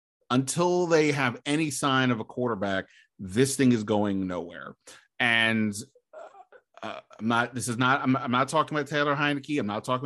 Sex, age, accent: male, 30-49, American